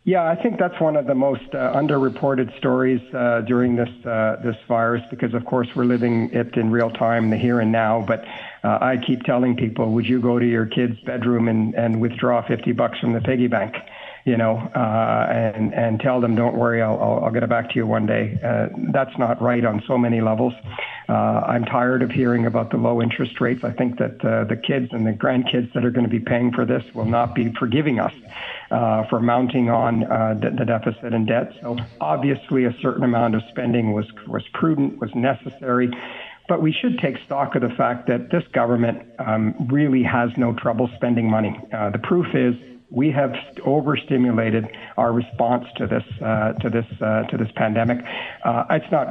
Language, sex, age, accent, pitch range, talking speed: English, male, 50-69, American, 115-130 Hz, 210 wpm